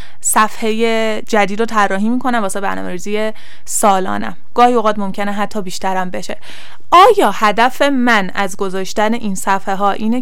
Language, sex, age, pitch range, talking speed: Persian, female, 20-39, 190-240 Hz, 135 wpm